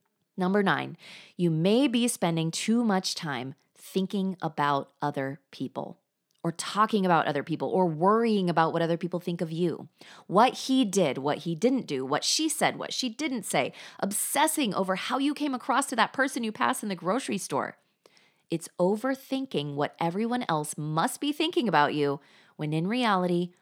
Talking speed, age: 175 wpm, 20-39